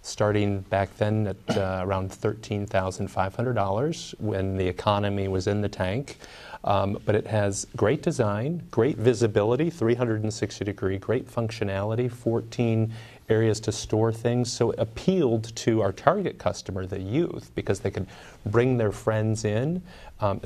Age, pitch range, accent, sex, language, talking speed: 40-59, 100-125 Hz, American, male, English, 155 wpm